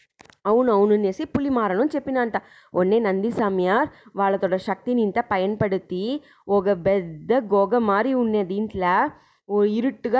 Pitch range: 205-265 Hz